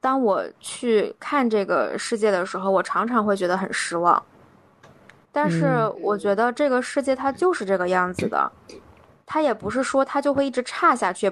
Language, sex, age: Chinese, female, 20-39